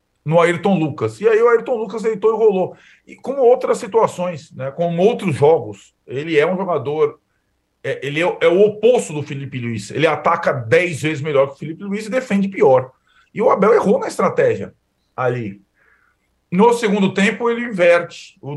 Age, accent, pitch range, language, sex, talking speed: 40-59, Brazilian, 145-205 Hz, Portuguese, male, 185 wpm